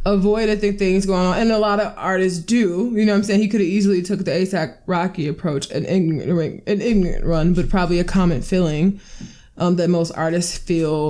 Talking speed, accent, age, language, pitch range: 215 wpm, American, 20-39, English, 180-210 Hz